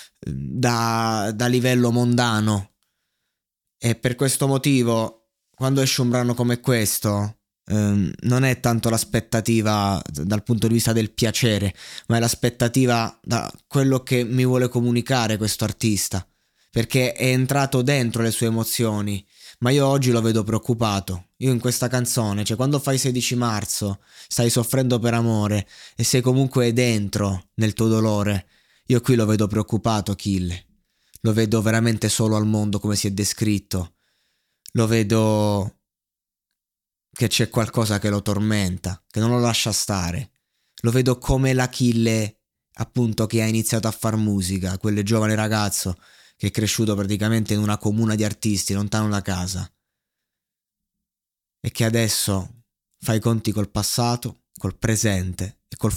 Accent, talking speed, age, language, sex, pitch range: native, 145 wpm, 20-39, Italian, male, 105-120 Hz